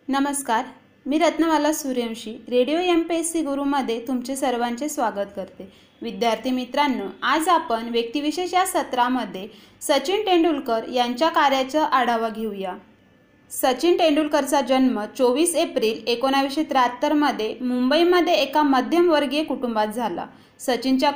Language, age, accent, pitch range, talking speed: Marathi, 20-39, native, 240-300 Hz, 110 wpm